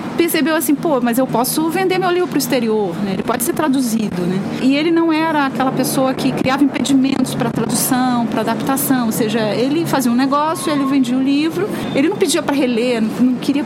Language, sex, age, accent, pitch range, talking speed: Portuguese, female, 40-59, Brazilian, 225-275 Hz, 215 wpm